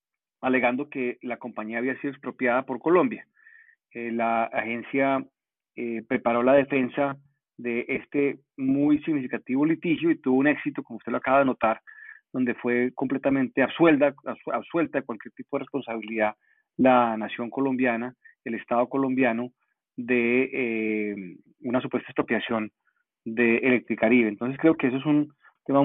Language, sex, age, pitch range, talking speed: Spanish, male, 40-59, 120-145 Hz, 140 wpm